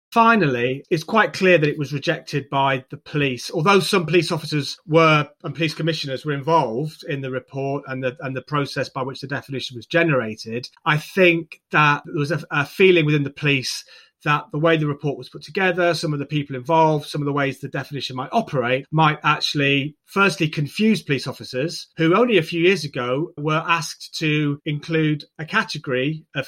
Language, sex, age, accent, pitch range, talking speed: English, male, 30-49, British, 140-175 Hz, 195 wpm